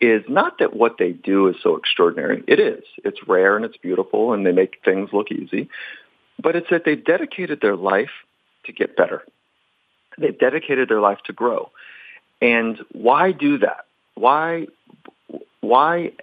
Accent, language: American, English